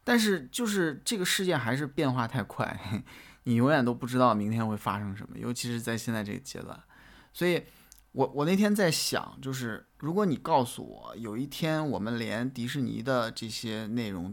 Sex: male